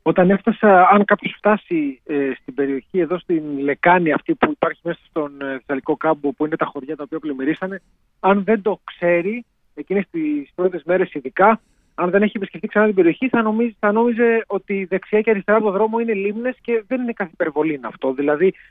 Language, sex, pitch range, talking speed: Greek, male, 155-210 Hz, 190 wpm